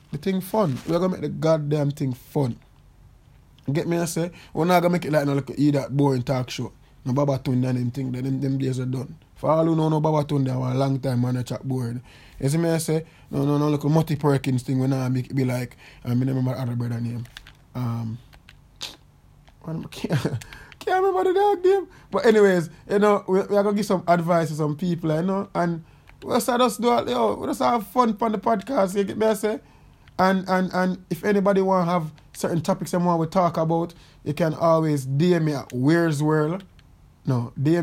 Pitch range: 135-180 Hz